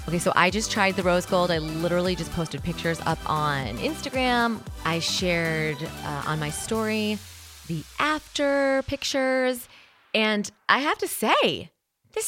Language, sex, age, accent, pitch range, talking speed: English, female, 30-49, American, 170-230 Hz, 150 wpm